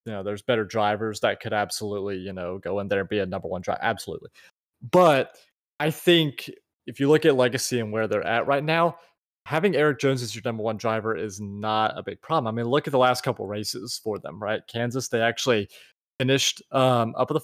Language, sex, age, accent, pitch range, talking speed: English, male, 20-39, American, 110-140 Hz, 225 wpm